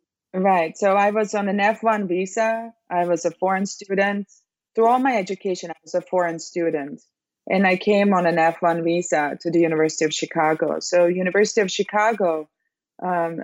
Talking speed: 175 wpm